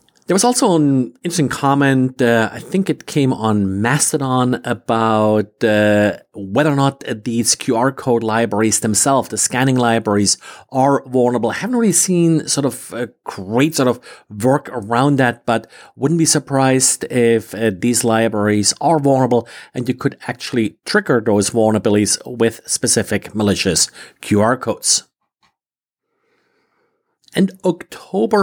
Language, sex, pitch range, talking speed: English, male, 115-150 Hz, 135 wpm